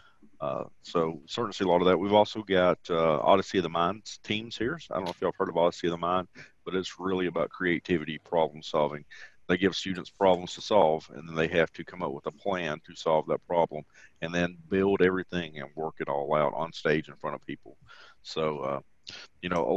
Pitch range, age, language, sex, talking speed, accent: 90-105 Hz, 40-59, English, male, 230 wpm, American